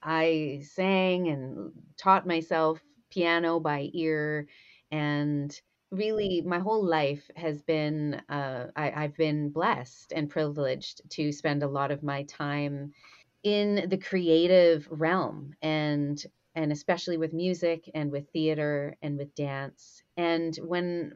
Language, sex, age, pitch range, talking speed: English, female, 30-49, 145-175 Hz, 130 wpm